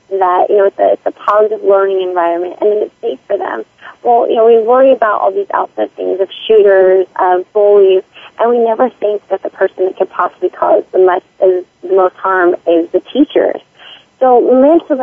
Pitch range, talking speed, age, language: 190-250 Hz, 210 wpm, 30-49, English